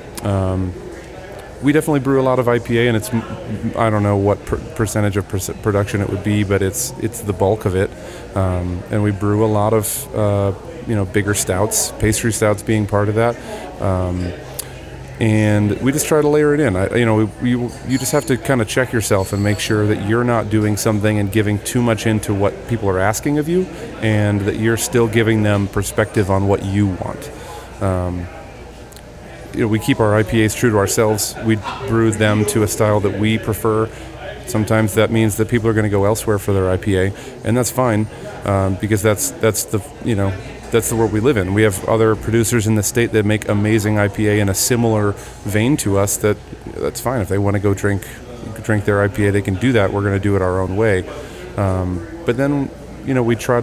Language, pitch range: English, 100-120 Hz